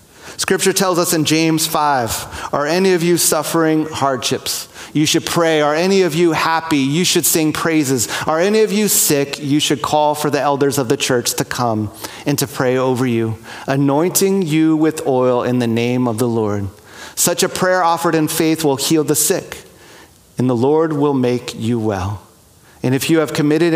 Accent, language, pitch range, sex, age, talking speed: American, English, 125-165 Hz, male, 40-59, 195 wpm